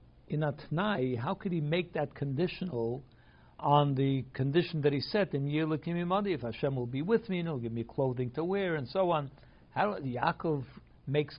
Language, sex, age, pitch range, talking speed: English, male, 60-79, 120-150 Hz, 185 wpm